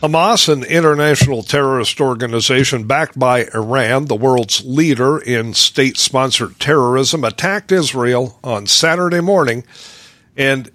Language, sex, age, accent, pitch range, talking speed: English, male, 50-69, American, 130-155 Hz, 110 wpm